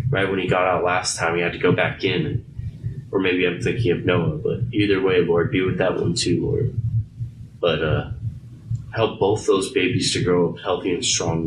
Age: 20-39